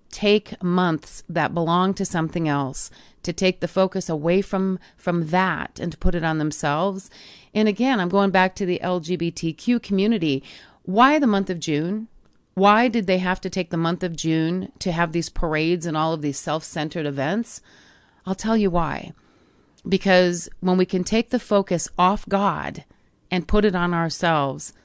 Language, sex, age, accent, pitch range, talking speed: English, female, 40-59, American, 165-205 Hz, 175 wpm